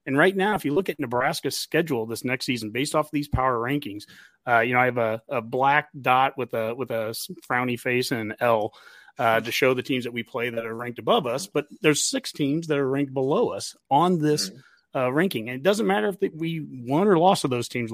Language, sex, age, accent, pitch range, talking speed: English, male, 30-49, American, 125-155 Hz, 250 wpm